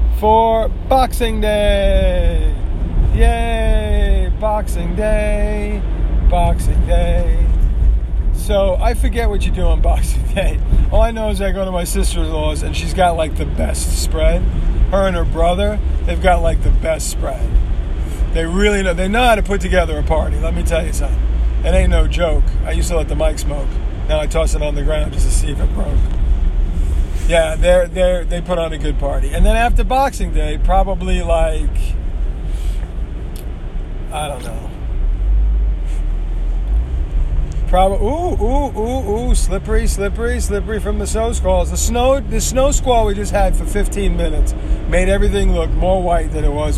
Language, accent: English, American